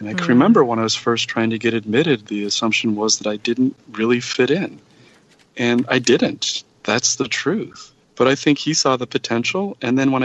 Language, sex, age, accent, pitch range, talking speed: English, male, 40-59, American, 100-120 Hz, 215 wpm